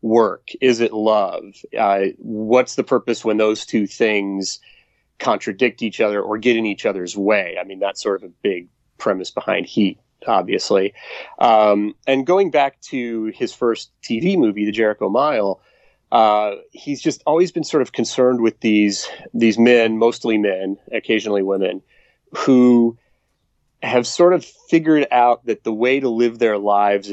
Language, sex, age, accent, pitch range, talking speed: English, male, 30-49, American, 105-125 Hz, 160 wpm